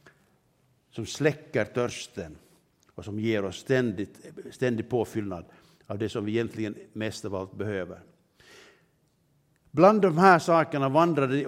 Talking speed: 125 wpm